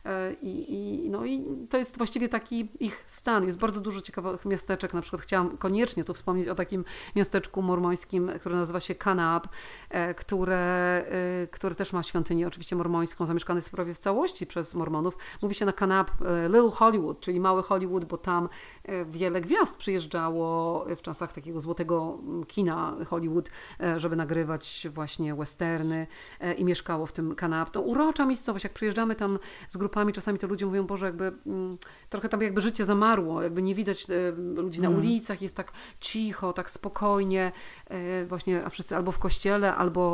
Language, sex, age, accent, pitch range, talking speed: Polish, female, 40-59, native, 175-205 Hz, 165 wpm